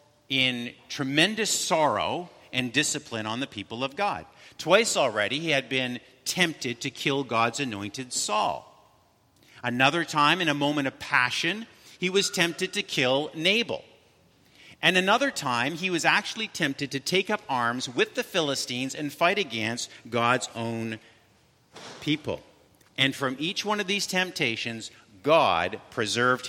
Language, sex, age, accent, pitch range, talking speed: English, male, 50-69, American, 115-155 Hz, 145 wpm